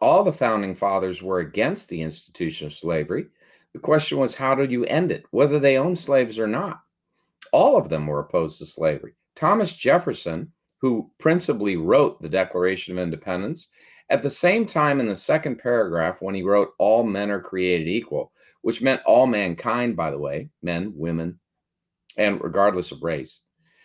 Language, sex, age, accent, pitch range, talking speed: English, male, 50-69, American, 95-150 Hz, 175 wpm